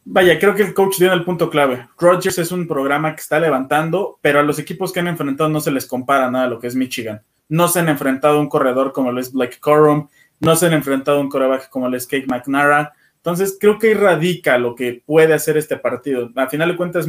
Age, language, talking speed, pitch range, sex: 20-39, Spanish, 250 wpm, 145-195 Hz, male